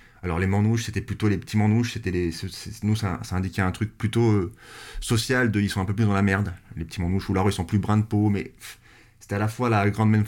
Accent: French